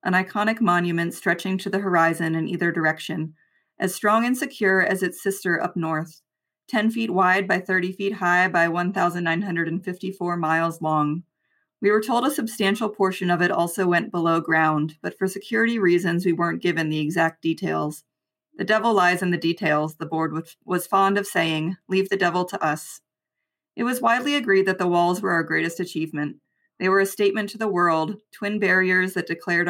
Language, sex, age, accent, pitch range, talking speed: English, female, 30-49, American, 165-195 Hz, 185 wpm